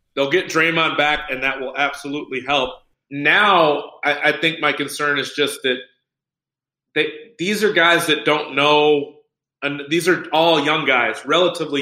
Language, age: English, 30-49